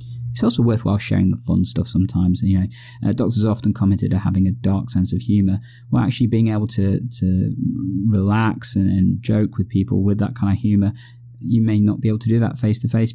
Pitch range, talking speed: 95-120 Hz, 230 wpm